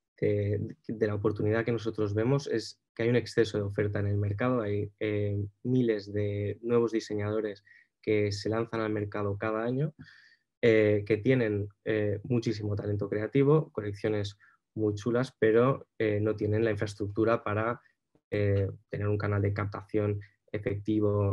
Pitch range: 100-115 Hz